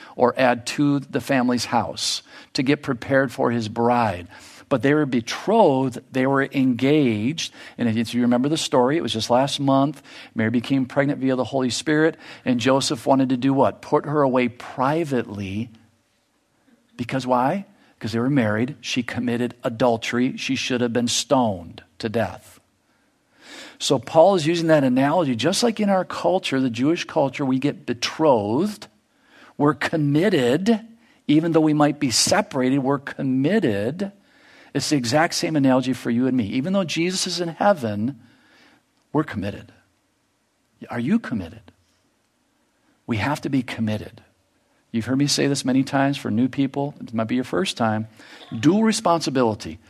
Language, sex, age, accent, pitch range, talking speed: English, male, 50-69, American, 120-165 Hz, 160 wpm